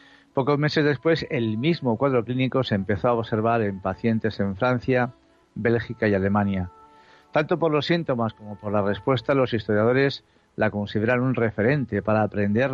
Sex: male